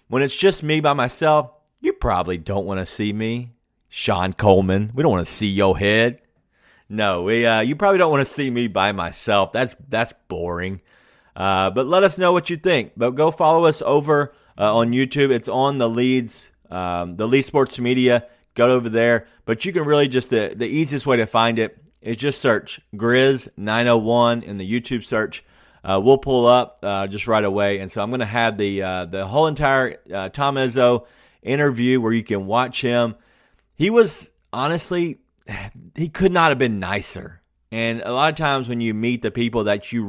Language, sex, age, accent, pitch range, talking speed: English, male, 30-49, American, 100-135 Hz, 205 wpm